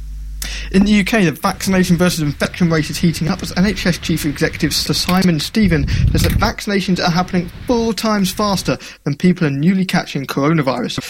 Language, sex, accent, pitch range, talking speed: English, male, British, 135-180 Hz, 175 wpm